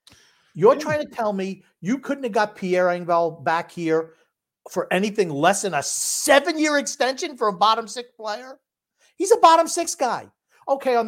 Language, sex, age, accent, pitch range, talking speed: English, male, 50-69, American, 180-260 Hz, 175 wpm